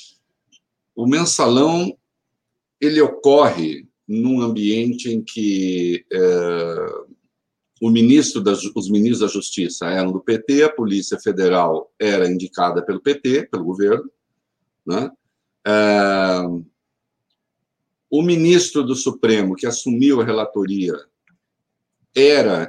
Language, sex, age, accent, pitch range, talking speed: Portuguese, male, 50-69, Brazilian, 95-120 Hz, 105 wpm